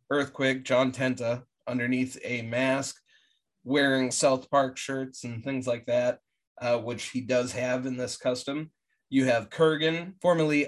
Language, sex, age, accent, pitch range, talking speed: English, male, 30-49, American, 120-145 Hz, 145 wpm